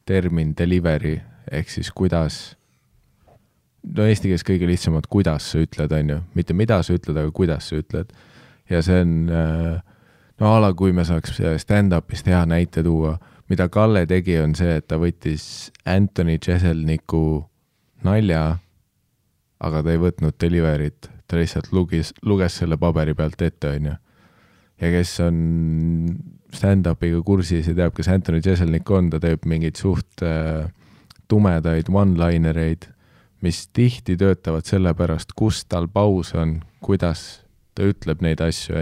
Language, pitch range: English, 80-95 Hz